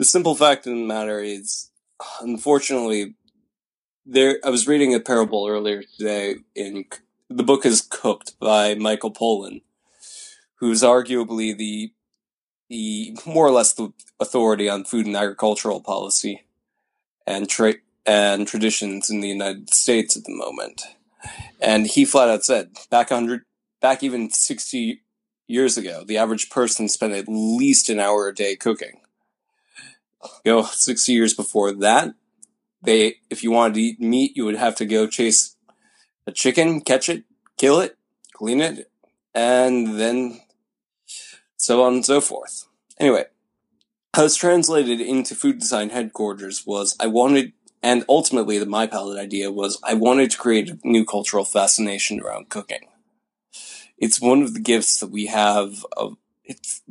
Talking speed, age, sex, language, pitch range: 150 wpm, 20-39, male, English, 105-135 Hz